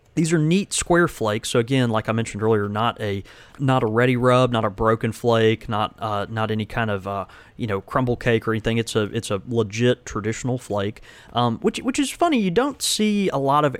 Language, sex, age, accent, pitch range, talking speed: English, male, 30-49, American, 105-125 Hz, 225 wpm